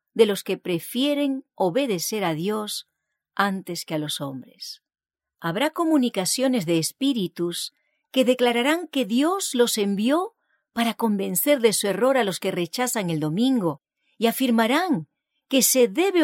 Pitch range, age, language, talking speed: 185-275 Hz, 40-59, English, 140 wpm